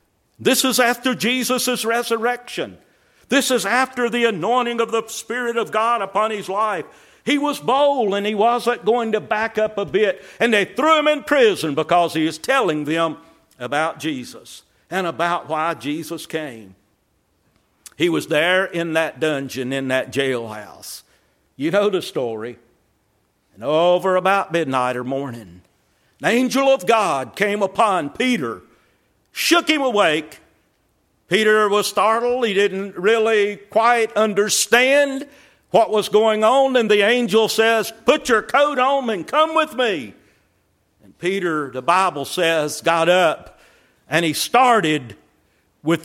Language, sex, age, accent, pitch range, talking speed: English, male, 60-79, American, 165-240 Hz, 145 wpm